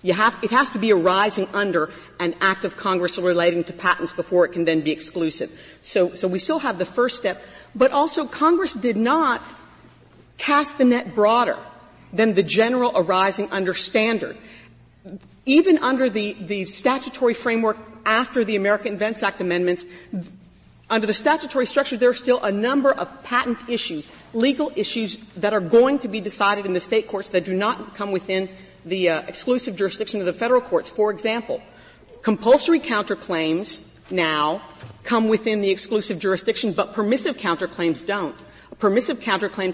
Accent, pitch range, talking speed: American, 185-240 Hz, 165 wpm